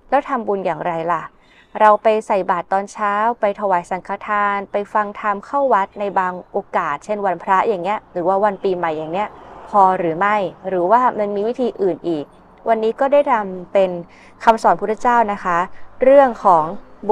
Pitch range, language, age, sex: 170-215 Hz, Thai, 20-39, female